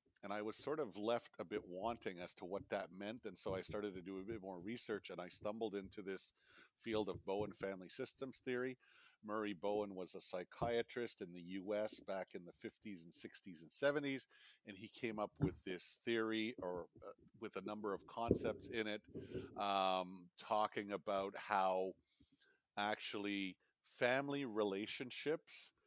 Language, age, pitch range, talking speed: English, 50-69, 100-115 Hz, 170 wpm